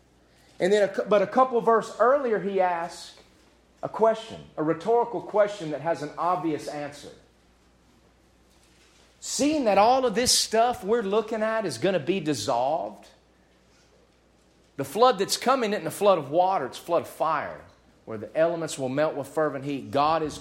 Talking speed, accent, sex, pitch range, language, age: 175 wpm, American, male, 145-245 Hz, English, 40-59